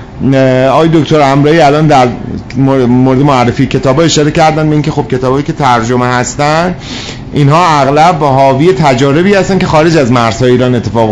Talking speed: 160 wpm